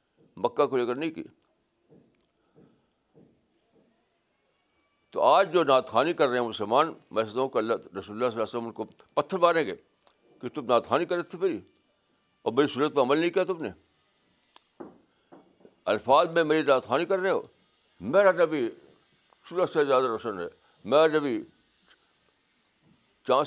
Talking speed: 150 wpm